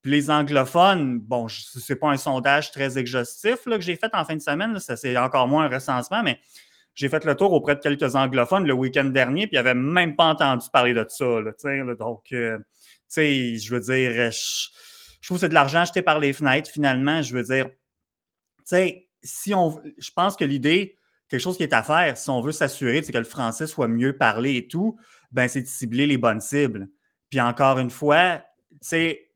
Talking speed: 225 wpm